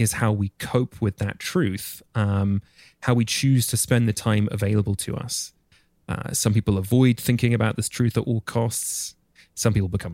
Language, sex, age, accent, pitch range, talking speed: English, male, 20-39, British, 100-125 Hz, 190 wpm